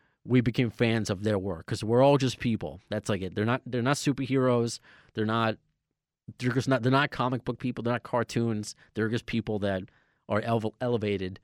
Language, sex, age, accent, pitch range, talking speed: English, male, 30-49, American, 95-120 Hz, 195 wpm